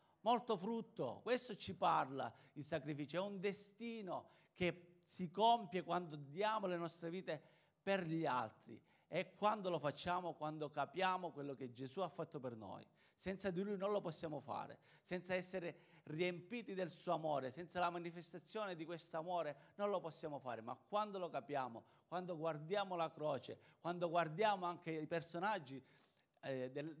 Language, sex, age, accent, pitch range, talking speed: Italian, male, 40-59, native, 150-185 Hz, 160 wpm